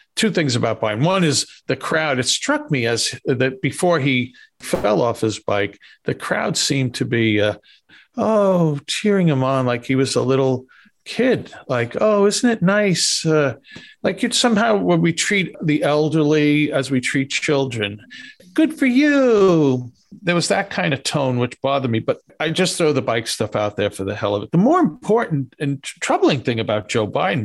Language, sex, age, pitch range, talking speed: English, male, 50-69, 115-170 Hz, 195 wpm